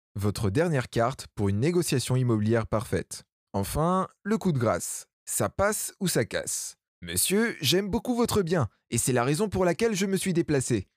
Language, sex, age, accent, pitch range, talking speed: French, male, 20-39, French, 115-170 Hz, 180 wpm